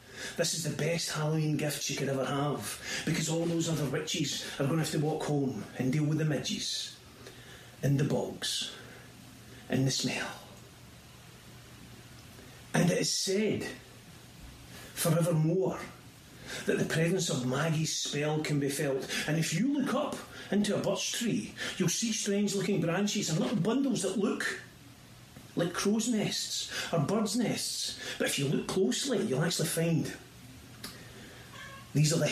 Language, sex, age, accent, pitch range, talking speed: English, male, 40-59, British, 135-175 Hz, 150 wpm